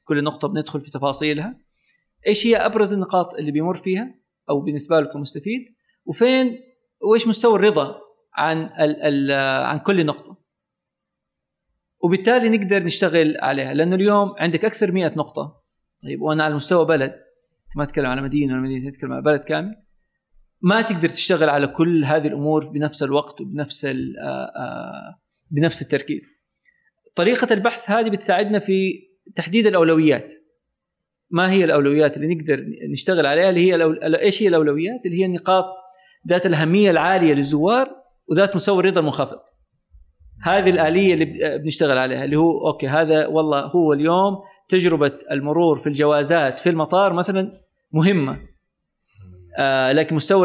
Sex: male